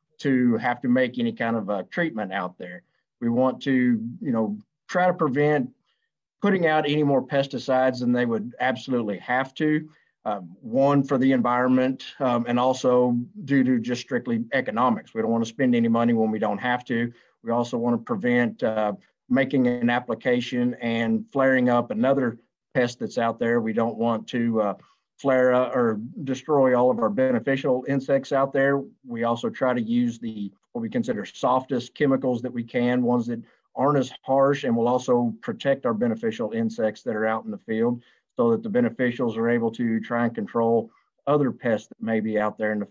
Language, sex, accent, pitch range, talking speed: English, male, American, 115-140 Hz, 195 wpm